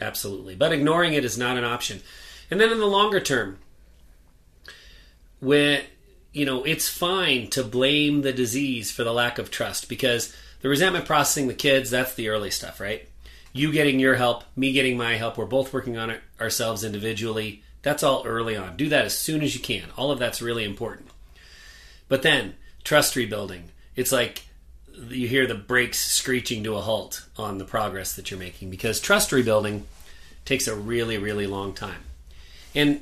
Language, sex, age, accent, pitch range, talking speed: English, male, 30-49, American, 100-135 Hz, 180 wpm